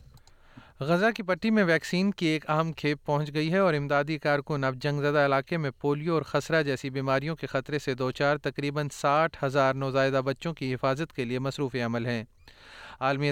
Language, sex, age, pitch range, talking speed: Urdu, male, 30-49, 135-150 Hz, 195 wpm